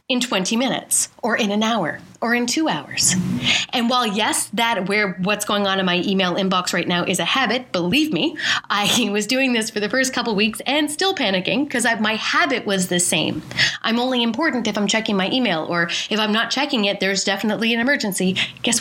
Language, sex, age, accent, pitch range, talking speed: English, female, 30-49, American, 210-280 Hz, 215 wpm